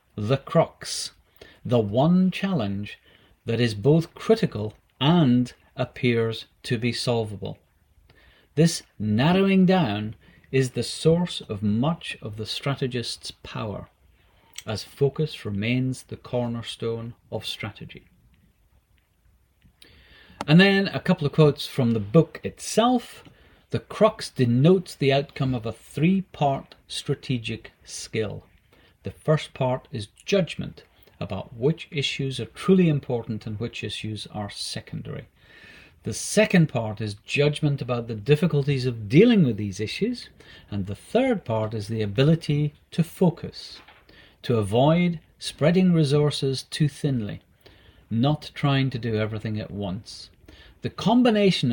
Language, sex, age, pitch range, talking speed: English, male, 40-59, 110-155 Hz, 125 wpm